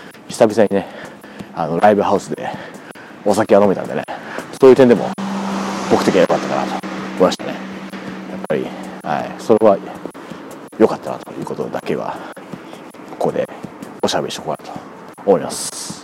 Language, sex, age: Japanese, male, 40-59